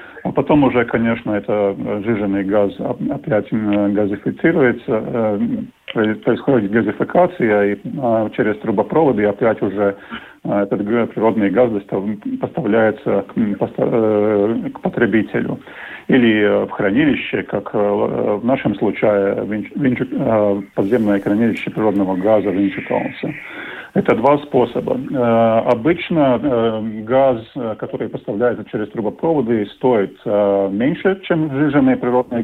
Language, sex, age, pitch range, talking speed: Russian, male, 50-69, 105-125 Hz, 95 wpm